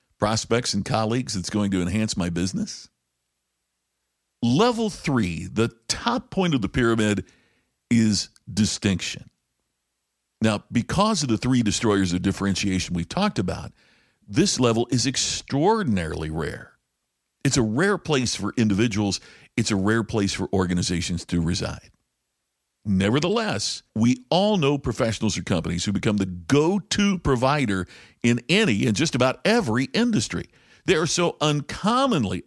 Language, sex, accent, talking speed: English, male, American, 135 wpm